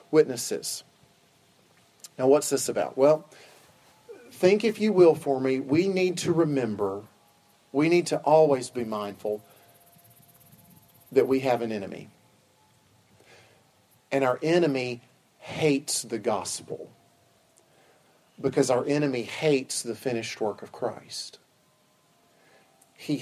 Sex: male